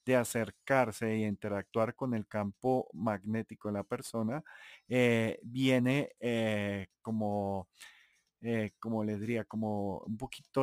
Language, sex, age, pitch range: Spanish, male, 30-49, 105-130 Hz